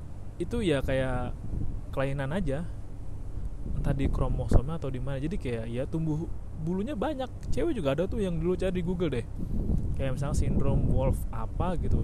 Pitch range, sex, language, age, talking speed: 100-140 Hz, male, Indonesian, 20-39, 165 wpm